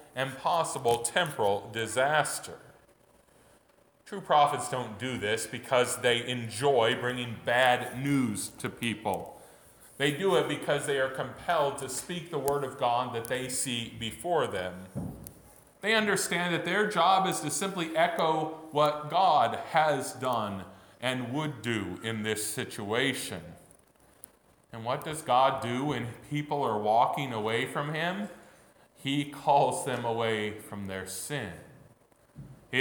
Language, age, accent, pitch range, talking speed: English, 40-59, American, 115-150 Hz, 135 wpm